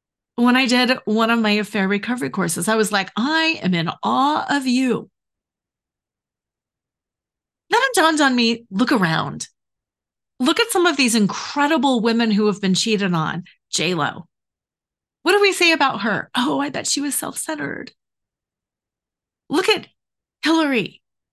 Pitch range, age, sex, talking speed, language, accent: 215-305 Hz, 30-49, female, 150 wpm, English, American